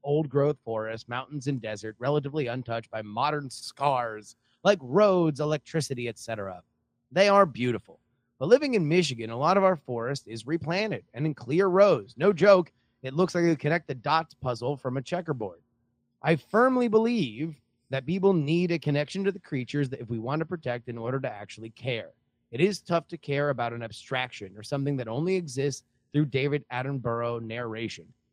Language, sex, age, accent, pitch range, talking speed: English, male, 30-49, American, 120-175 Hz, 180 wpm